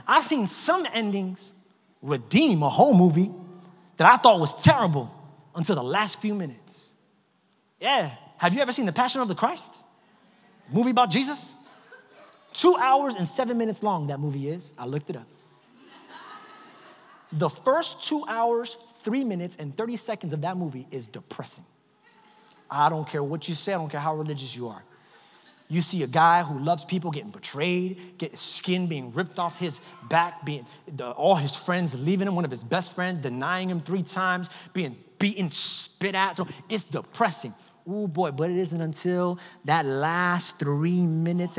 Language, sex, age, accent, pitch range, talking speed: English, male, 30-49, American, 165-210 Hz, 175 wpm